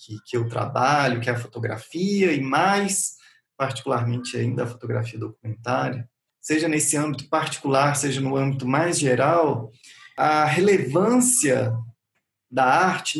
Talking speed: 125 wpm